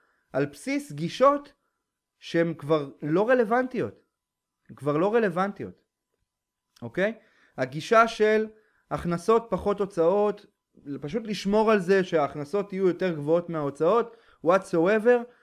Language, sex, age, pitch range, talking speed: Hebrew, male, 30-49, 155-220 Hz, 110 wpm